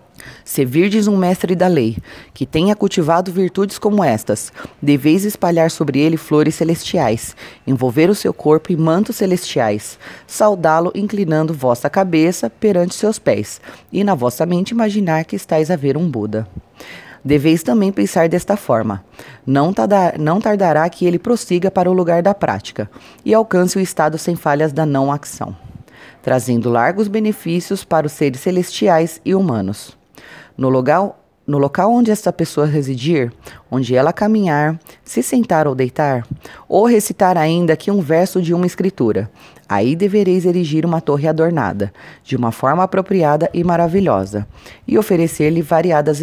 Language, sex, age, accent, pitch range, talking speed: Portuguese, female, 30-49, Brazilian, 145-190 Hz, 150 wpm